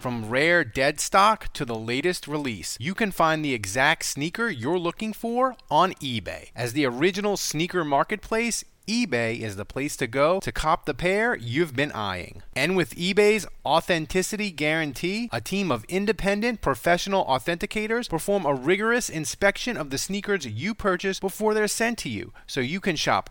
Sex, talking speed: male, 170 wpm